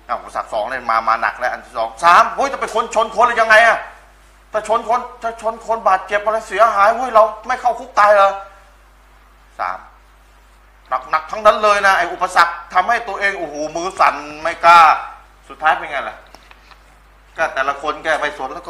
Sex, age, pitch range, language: male, 30-49, 155-230 Hz, Thai